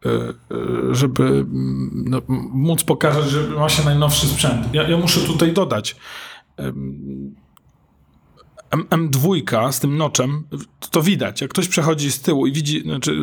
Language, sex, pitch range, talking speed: Polish, male, 125-155 Hz, 130 wpm